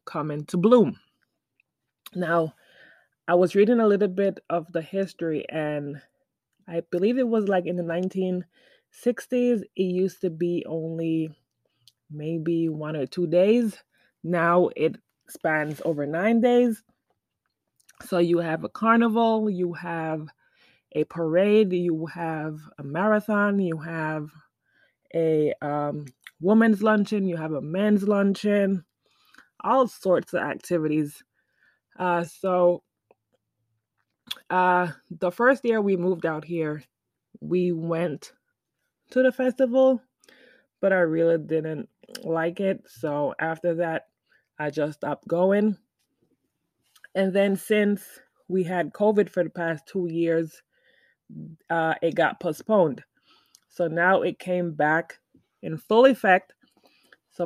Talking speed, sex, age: 125 wpm, female, 20-39